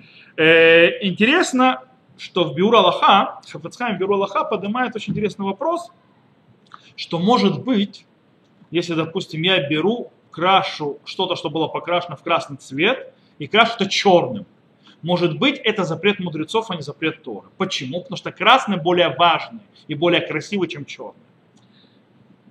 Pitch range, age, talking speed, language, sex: 160-200 Hz, 30-49, 135 wpm, Russian, male